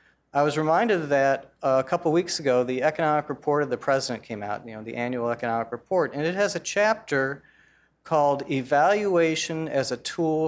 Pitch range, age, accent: 125-160 Hz, 40-59, American